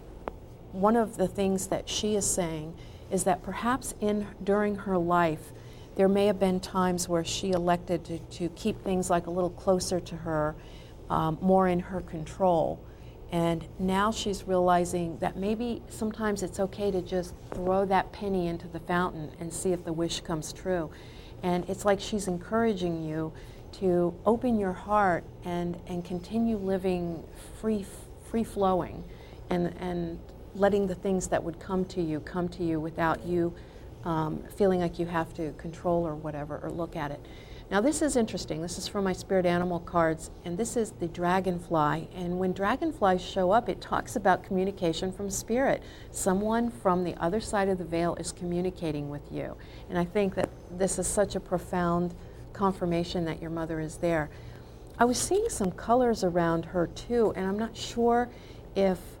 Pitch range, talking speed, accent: 170-195 Hz, 175 wpm, American